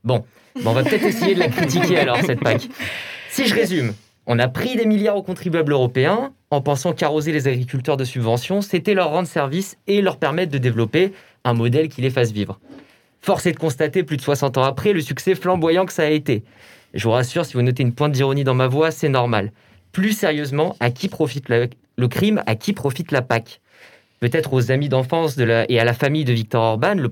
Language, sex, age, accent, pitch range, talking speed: French, male, 20-39, French, 120-160 Hz, 230 wpm